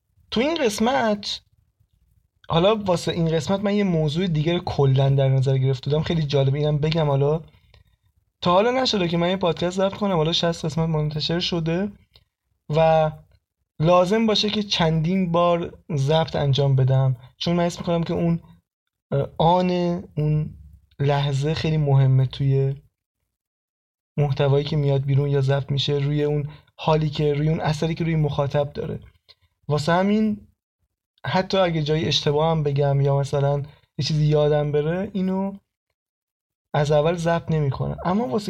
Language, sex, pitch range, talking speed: Persian, male, 140-175 Hz, 150 wpm